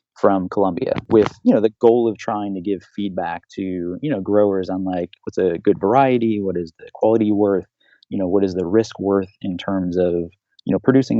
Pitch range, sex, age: 95-110 Hz, male, 20-39